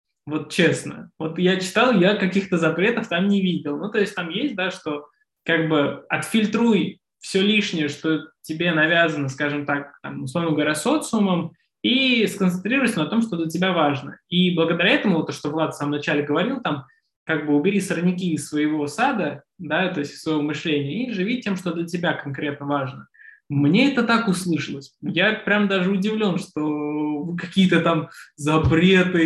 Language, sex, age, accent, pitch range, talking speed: Russian, male, 20-39, native, 155-195 Hz, 175 wpm